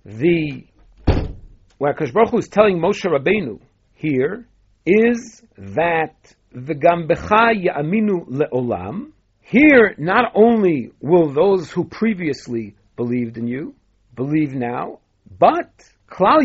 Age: 50-69